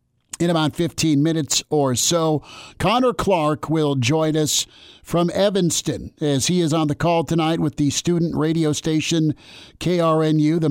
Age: 50-69